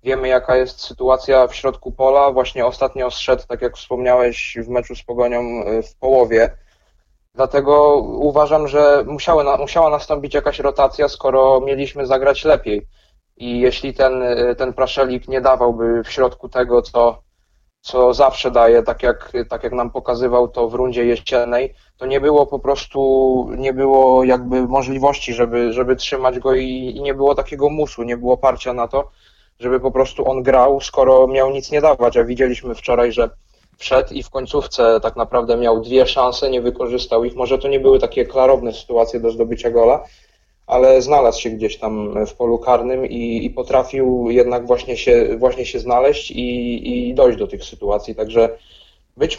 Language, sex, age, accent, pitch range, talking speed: Polish, male, 20-39, native, 120-140 Hz, 170 wpm